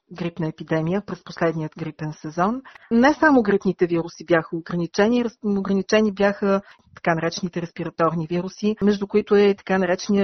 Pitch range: 165-195 Hz